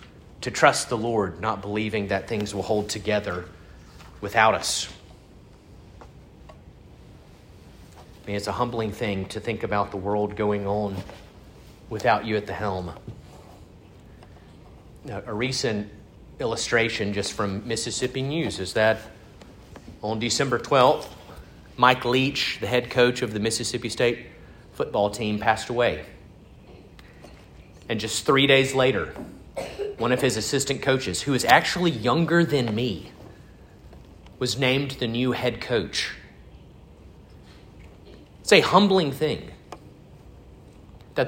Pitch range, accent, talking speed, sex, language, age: 95-125 Hz, American, 120 wpm, male, English, 40-59